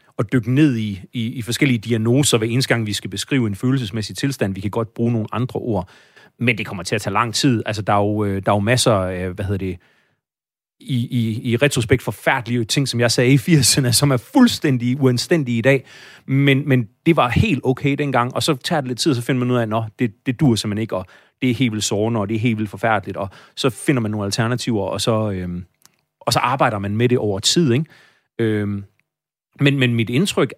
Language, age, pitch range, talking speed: Danish, 30-49, 105-130 Hz, 235 wpm